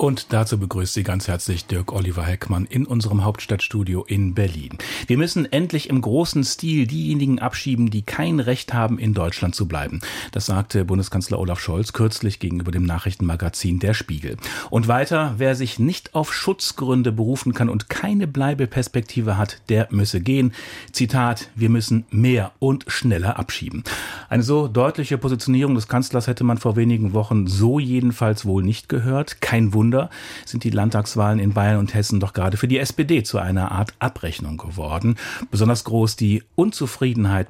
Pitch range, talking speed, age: 100-130 Hz, 165 wpm, 40-59